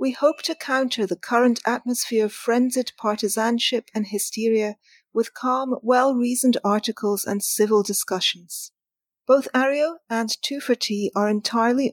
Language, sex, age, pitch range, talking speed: English, female, 40-59, 210-255 Hz, 130 wpm